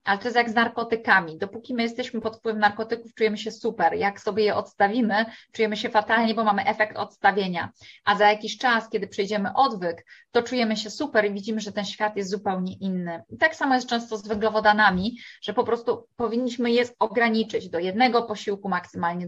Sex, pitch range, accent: female, 205-240 Hz, native